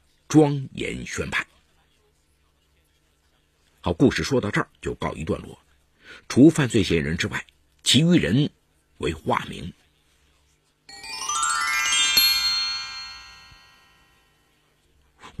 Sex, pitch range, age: male, 75-110 Hz, 60-79